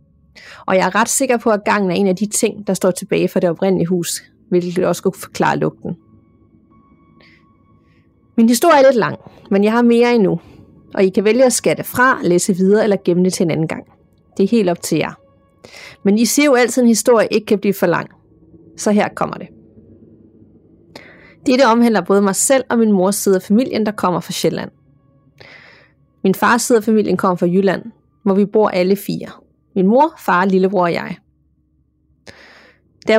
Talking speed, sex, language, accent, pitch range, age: 195 wpm, female, Danish, native, 170-225 Hz, 30-49